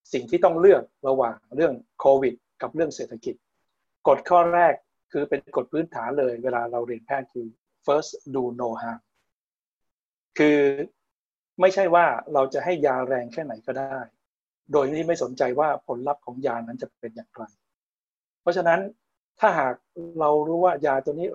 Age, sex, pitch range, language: 60-79, male, 125-165 Hz, Thai